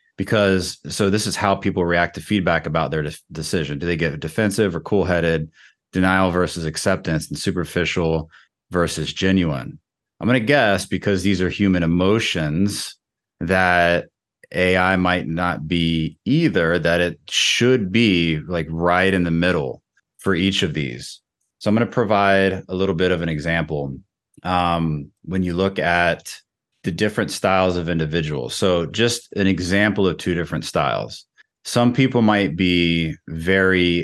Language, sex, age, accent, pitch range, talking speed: English, male, 30-49, American, 80-95 Hz, 155 wpm